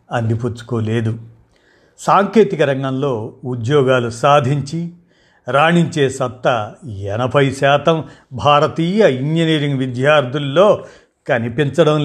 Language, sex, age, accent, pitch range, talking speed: Telugu, male, 50-69, native, 120-150 Hz, 65 wpm